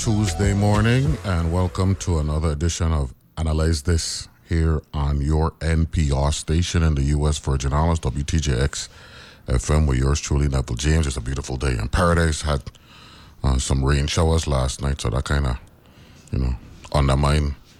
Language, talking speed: English, 160 wpm